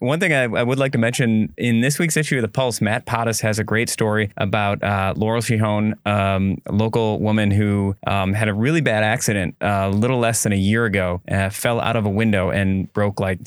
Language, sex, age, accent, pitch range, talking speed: English, male, 20-39, American, 100-115 Hz, 225 wpm